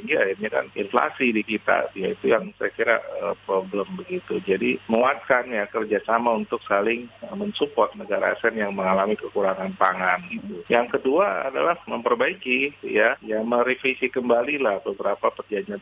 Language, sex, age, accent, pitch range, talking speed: Indonesian, male, 40-59, native, 100-125 Hz, 150 wpm